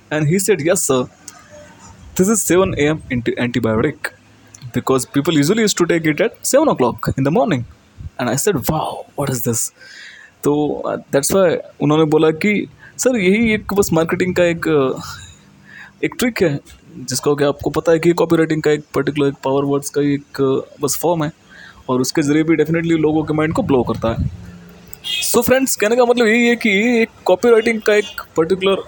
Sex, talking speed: male, 175 wpm